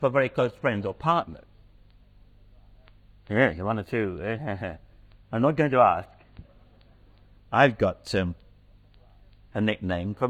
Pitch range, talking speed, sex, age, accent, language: 105-170 Hz, 120 wpm, male, 60-79, British, English